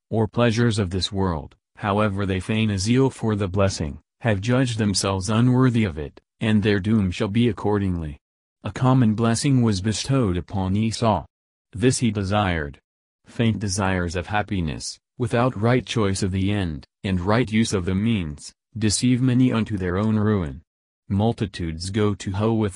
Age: 40-59